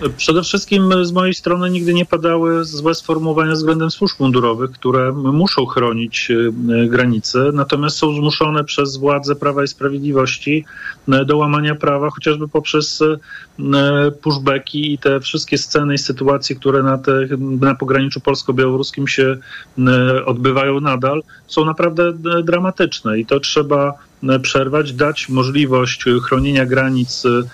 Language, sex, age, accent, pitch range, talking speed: Polish, male, 40-59, native, 130-150 Hz, 120 wpm